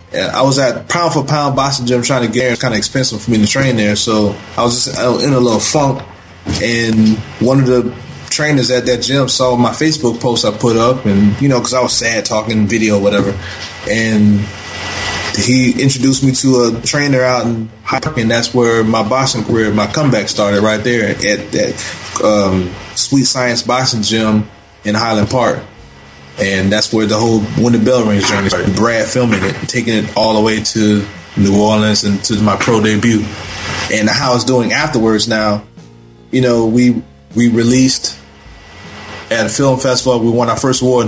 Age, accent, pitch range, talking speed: 20-39, American, 105-125 Hz, 200 wpm